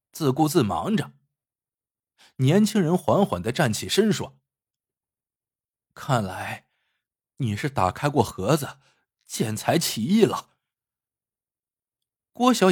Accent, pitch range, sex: native, 125-180 Hz, male